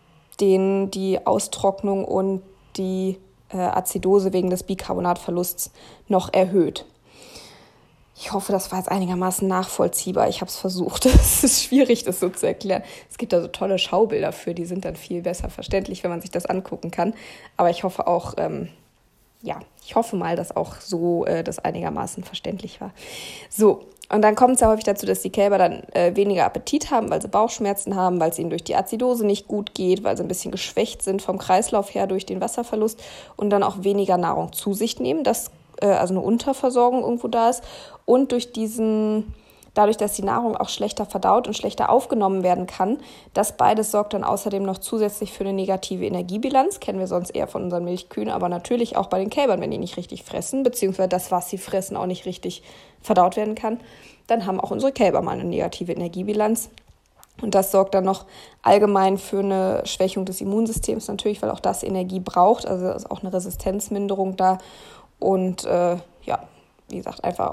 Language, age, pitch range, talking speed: German, 20-39, 185-215 Hz, 190 wpm